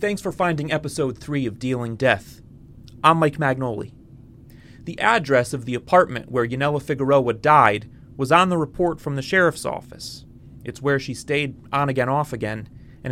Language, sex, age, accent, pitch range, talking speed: English, male, 30-49, American, 120-150 Hz, 170 wpm